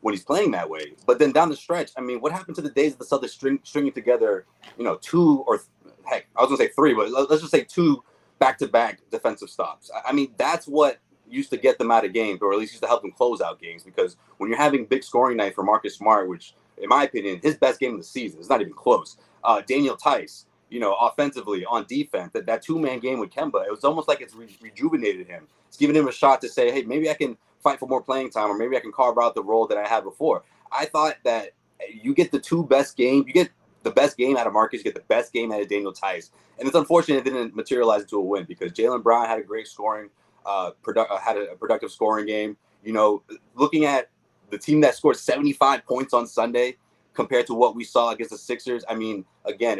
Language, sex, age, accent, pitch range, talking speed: English, male, 30-49, American, 115-175 Hz, 245 wpm